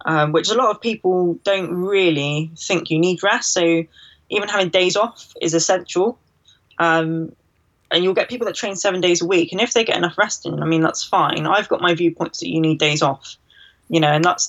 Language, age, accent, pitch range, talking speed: English, 20-39, British, 155-180 Hz, 220 wpm